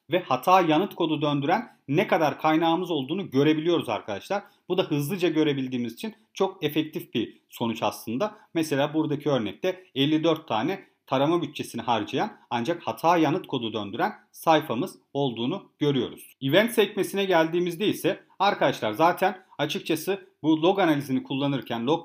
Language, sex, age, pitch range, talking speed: Turkish, male, 40-59, 145-190 Hz, 135 wpm